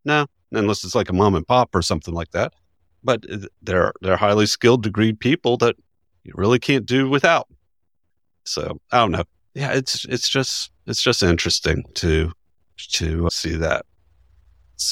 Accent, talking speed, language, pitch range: American, 165 wpm, English, 85-115 Hz